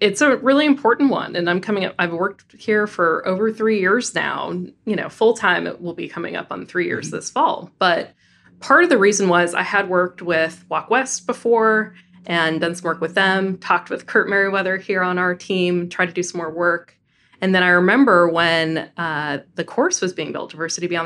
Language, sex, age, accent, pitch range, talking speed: English, female, 20-39, American, 170-215 Hz, 220 wpm